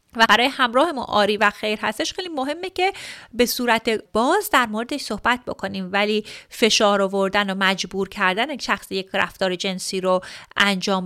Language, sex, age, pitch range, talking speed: Persian, female, 30-49, 195-285 Hz, 175 wpm